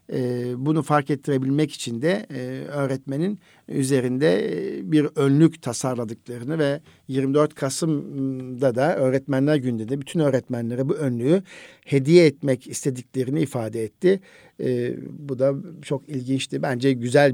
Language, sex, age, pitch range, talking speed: Turkish, male, 60-79, 125-150 Hz, 120 wpm